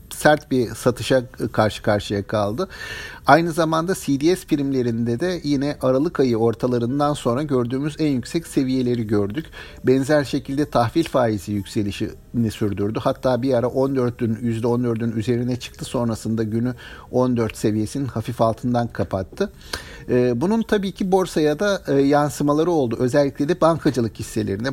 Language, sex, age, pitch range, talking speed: Turkish, male, 50-69, 120-160 Hz, 125 wpm